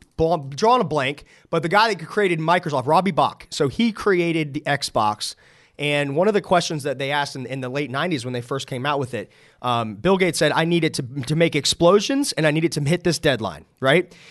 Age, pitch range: 30-49, 150-205 Hz